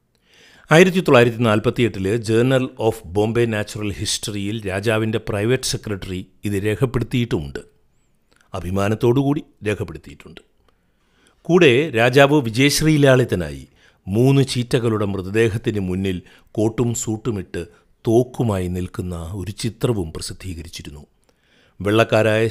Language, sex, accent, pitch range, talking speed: Malayalam, male, native, 95-125 Hz, 80 wpm